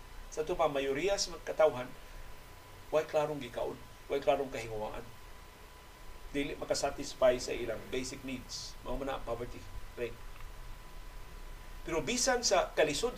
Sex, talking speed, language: male, 115 wpm, Filipino